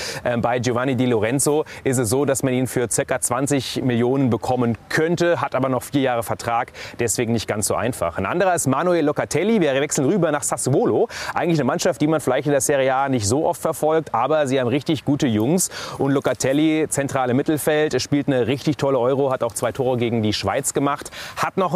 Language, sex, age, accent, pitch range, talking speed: German, male, 30-49, German, 125-155 Hz, 210 wpm